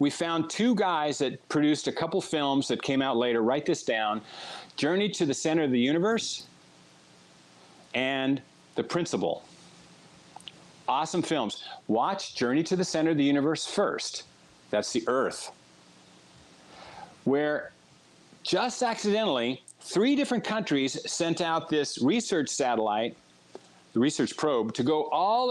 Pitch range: 130-185 Hz